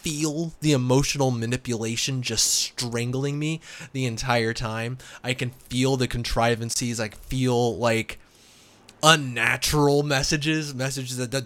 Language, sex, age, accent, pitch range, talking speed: English, male, 20-39, American, 115-140 Hz, 115 wpm